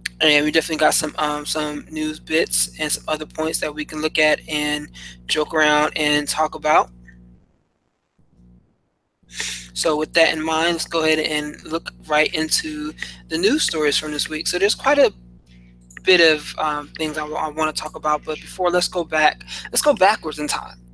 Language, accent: English, American